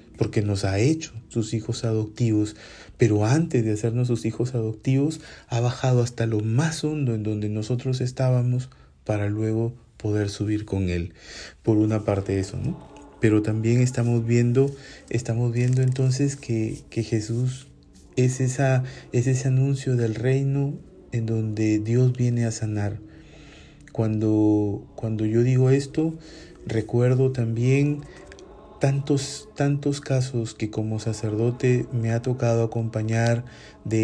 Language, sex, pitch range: Spanish, male, 110-125 Hz